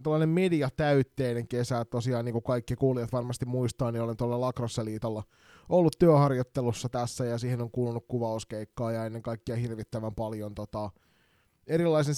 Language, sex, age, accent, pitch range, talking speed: Finnish, male, 30-49, native, 115-140 Hz, 150 wpm